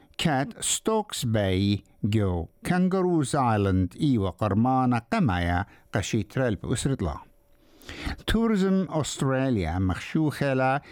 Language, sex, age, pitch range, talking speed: English, male, 60-79, 95-145 Hz, 80 wpm